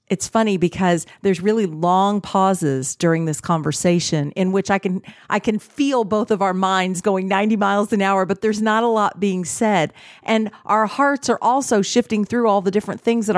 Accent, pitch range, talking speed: American, 155-205 Hz, 200 wpm